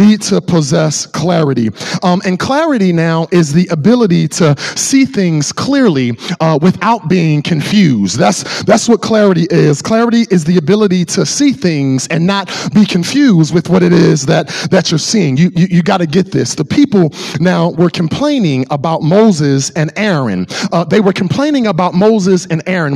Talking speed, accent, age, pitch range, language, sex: 175 wpm, American, 40-59, 160-205 Hz, English, male